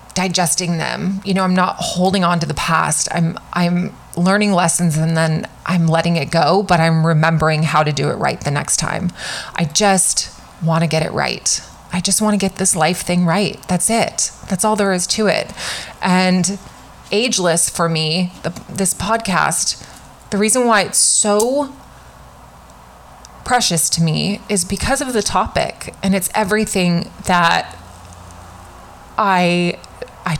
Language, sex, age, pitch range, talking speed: English, female, 20-39, 170-215 Hz, 160 wpm